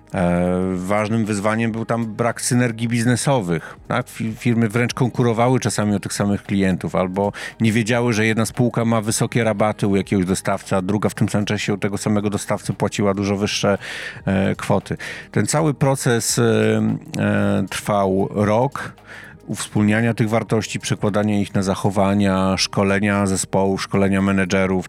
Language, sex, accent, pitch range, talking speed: Polish, male, native, 100-115 Hz, 135 wpm